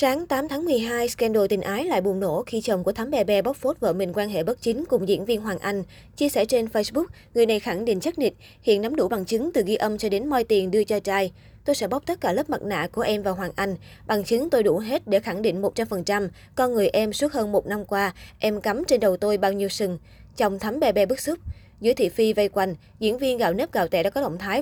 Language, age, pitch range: Vietnamese, 20-39, 195-245 Hz